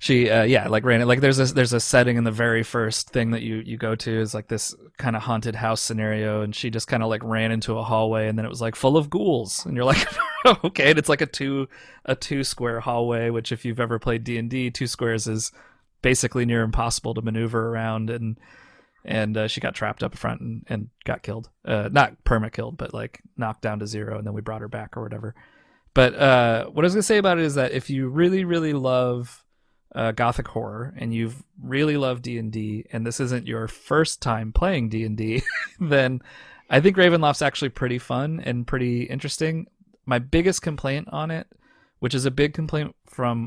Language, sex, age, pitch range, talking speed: English, male, 20-39, 110-130 Hz, 220 wpm